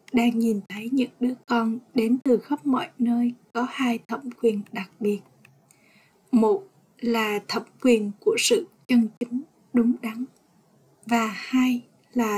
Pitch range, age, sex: 220-255 Hz, 20-39, female